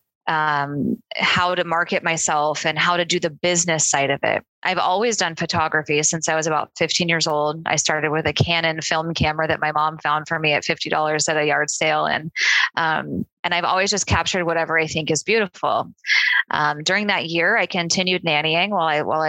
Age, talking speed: 20-39, 205 wpm